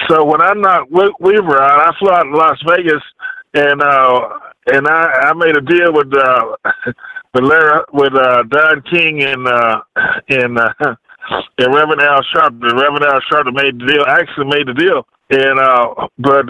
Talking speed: 180 wpm